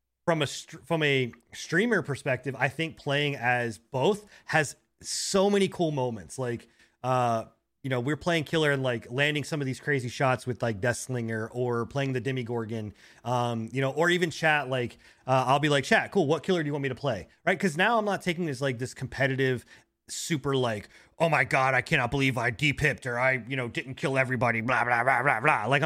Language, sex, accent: English, male, American